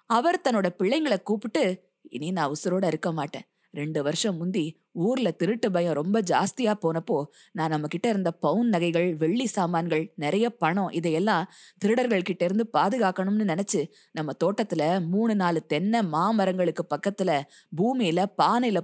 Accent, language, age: native, Tamil, 20-39